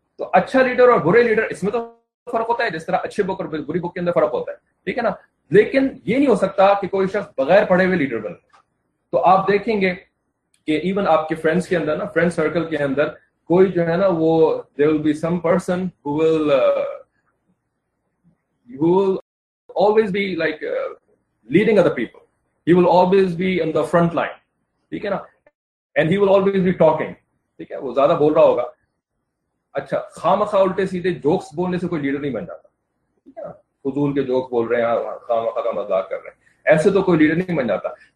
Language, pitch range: English, 160-215 Hz